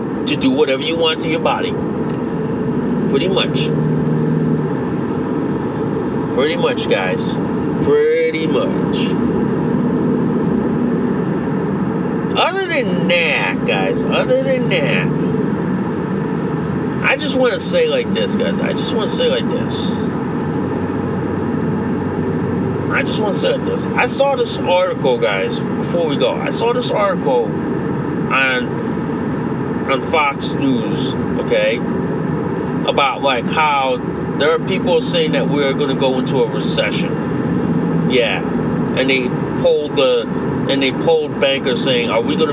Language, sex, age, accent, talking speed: English, male, 40-59, American, 125 wpm